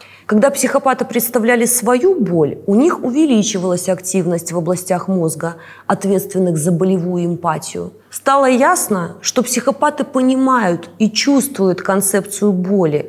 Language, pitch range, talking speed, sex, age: Russian, 180-240 Hz, 115 wpm, female, 20-39